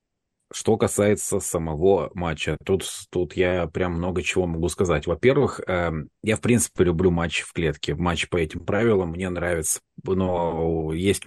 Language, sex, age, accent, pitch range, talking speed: Russian, male, 30-49, native, 85-105 Hz, 155 wpm